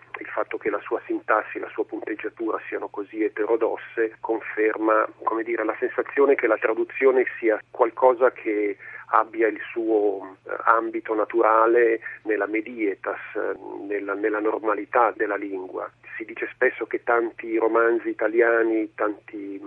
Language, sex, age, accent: Italian, male, 40-59, native